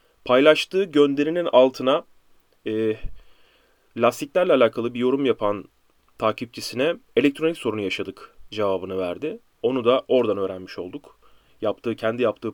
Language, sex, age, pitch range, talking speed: Turkish, male, 30-49, 105-135 Hz, 110 wpm